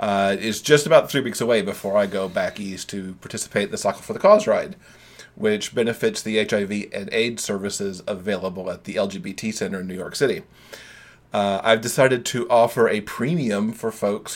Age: 40-59